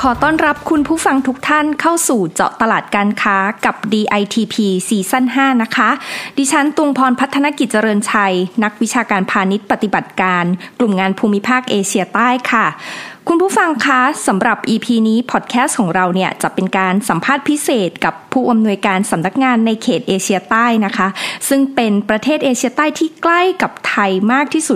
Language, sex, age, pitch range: Thai, female, 20-39, 200-255 Hz